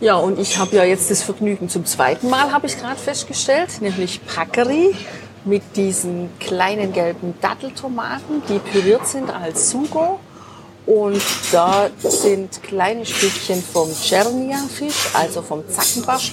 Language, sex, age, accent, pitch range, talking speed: German, female, 50-69, German, 190-235 Hz, 135 wpm